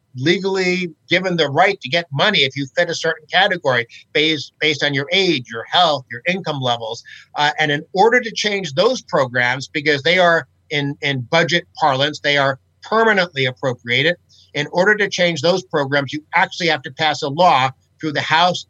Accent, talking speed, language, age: American, 185 wpm, English, 50-69